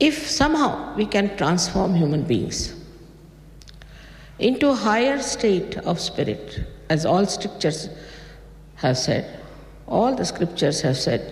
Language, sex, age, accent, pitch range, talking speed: English, female, 50-69, Indian, 150-185 Hz, 120 wpm